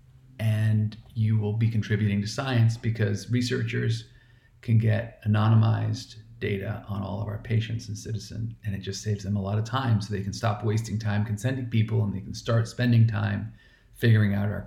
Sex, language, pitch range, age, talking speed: male, English, 110-120 Hz, 40-59, 190 wpm